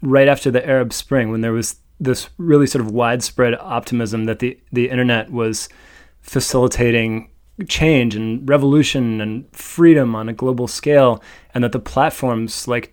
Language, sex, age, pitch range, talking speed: English, male, 20-39, 120-145 Hz, 160 wpm